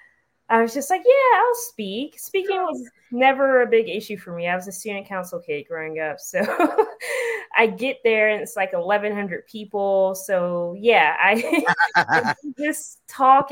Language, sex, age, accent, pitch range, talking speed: English, female, 20-39, American, 185-245 Hz, 165 wpm